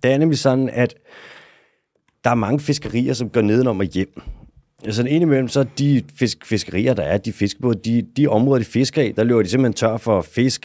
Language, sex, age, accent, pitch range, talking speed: Danish, male, 30-49, native, 105-125 Hz, 220 wpm